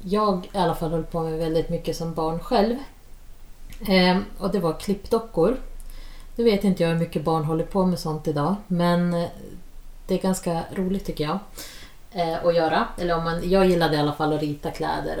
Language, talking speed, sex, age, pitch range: Swedish, 185 wpm, female, 30-49, 155-185 Hz